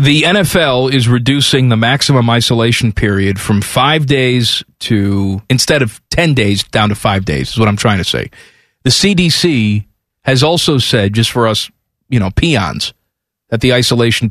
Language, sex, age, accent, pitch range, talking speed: English, male, 40-59, American, 110-145 Hz, 170 wpm